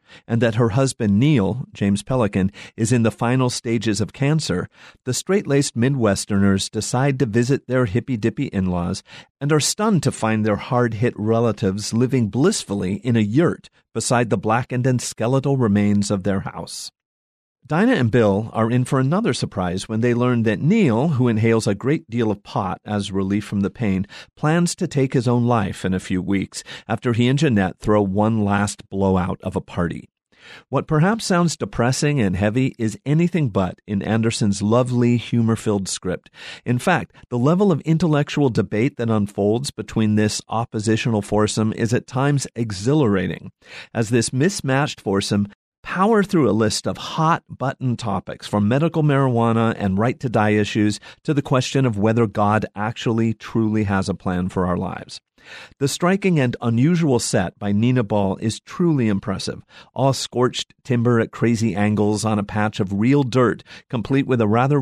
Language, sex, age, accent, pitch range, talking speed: English, male, 40-59, American, 105-130 Hz, 165 wpm